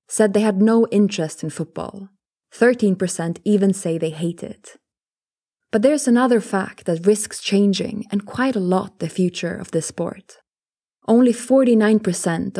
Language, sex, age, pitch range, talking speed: English, female, 20-39, 175-220 Hz, 150 wpm